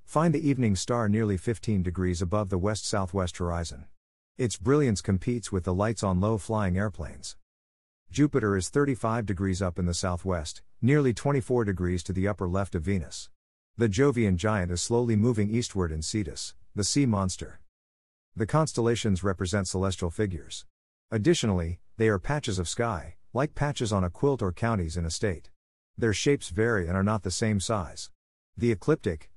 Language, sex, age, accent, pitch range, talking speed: English, male, 50-69, American, 90-115 Hz, 165 wpm